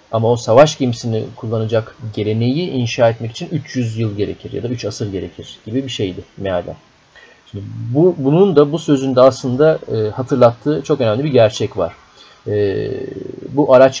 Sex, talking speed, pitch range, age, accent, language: male, 160 wpm, 105-130 Hz, 40-59, native, Turkish